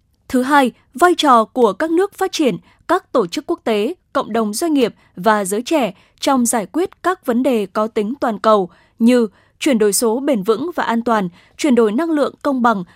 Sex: female